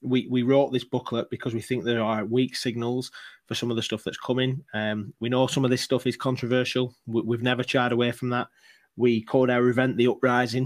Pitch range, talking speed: 115-135 Hz, 230 wpm